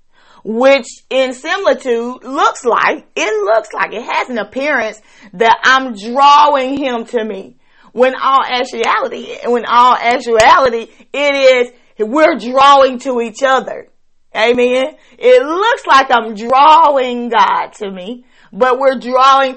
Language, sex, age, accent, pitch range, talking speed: Russian, female, 40-59, American, 225-290 Hz, 135 wpm